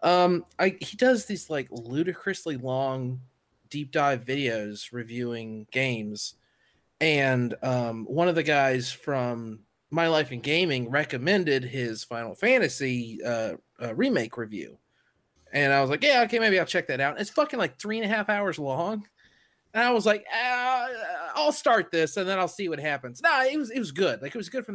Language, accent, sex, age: English, American, male, 30-49